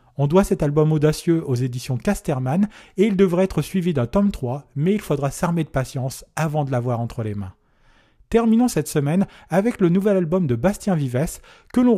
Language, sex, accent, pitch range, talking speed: French, male, French, 130-180 Hz, 200 wpm